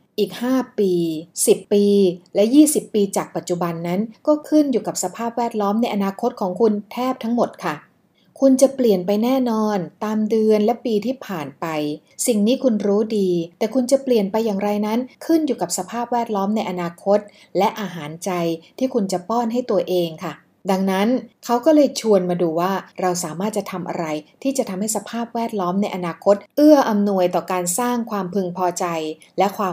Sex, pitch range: female, 180-230 Hz